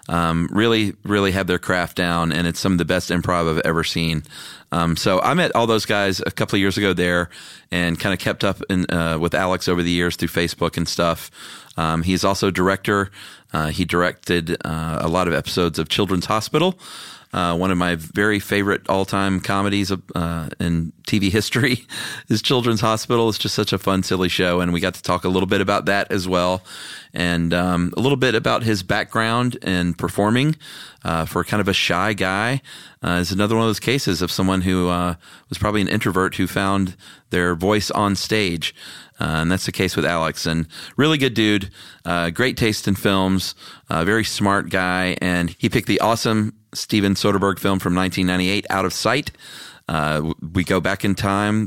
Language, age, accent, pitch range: English, 30-49, American, 90-105 Hz